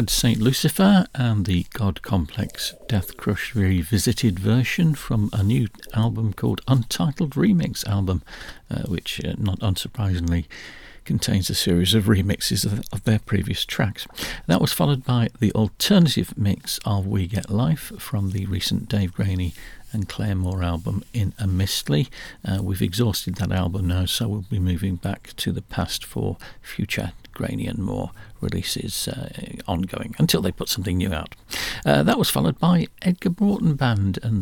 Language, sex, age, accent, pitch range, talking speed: English, male, 50-69, British, 95-120 Hz, 160 wpm